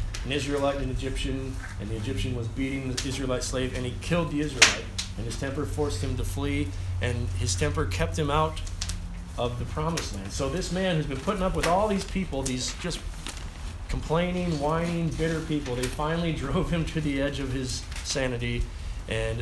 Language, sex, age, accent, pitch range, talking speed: English, male, 40-59, American, 90-150 Hz, 195 wpm